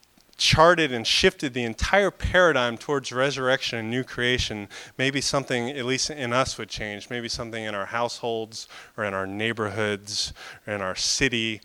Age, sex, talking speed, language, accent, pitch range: 30-49, male, 165 wpm, English, American, 110-130 Hz